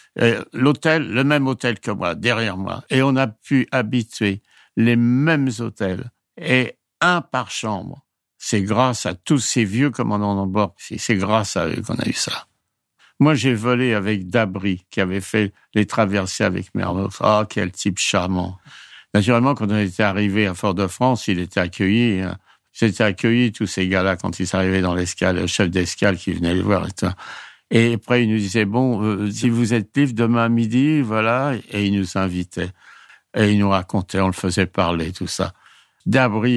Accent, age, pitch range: French, 60-79, 95-125 Hz